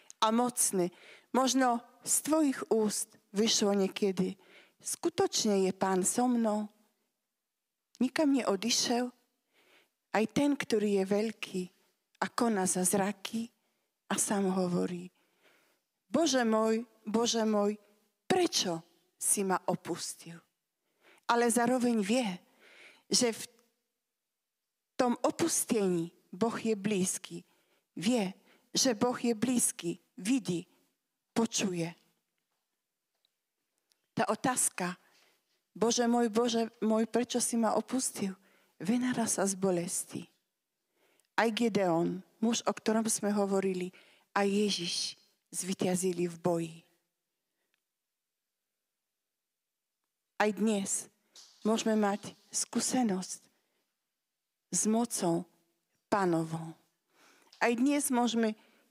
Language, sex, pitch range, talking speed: Slovak, female, 185-240 Hz, 95 wpm